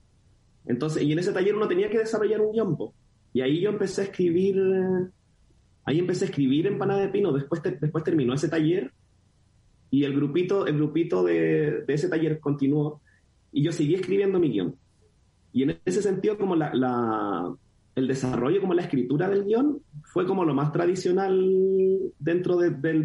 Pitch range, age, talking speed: 140-185 Hz, 30-49, 180 wpm